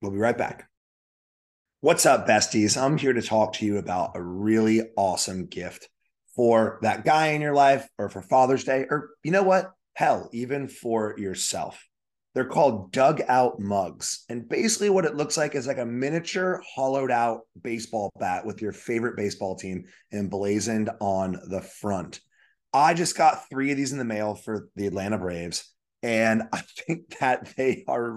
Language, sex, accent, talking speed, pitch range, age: English, male, American, 175 wpm, 105-135 Hz, 30-49